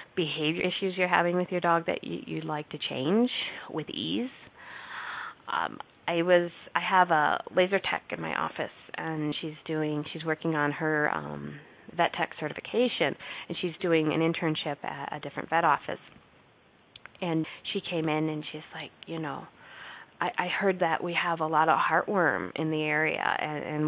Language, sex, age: English, female, 30-49